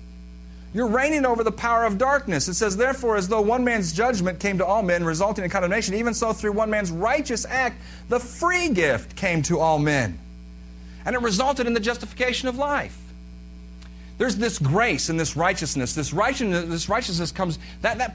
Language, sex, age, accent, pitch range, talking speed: English, male, 40-59, American, 130-205 Hz, 180 wpm